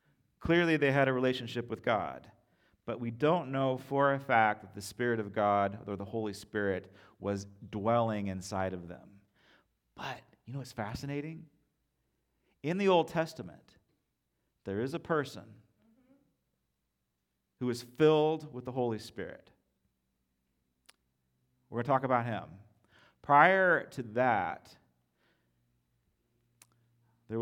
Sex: male